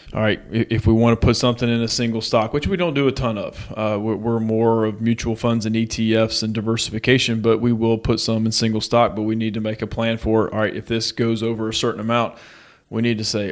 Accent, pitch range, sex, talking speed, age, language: American, 110-125 Hz, male, 255 wpm, 30-49, English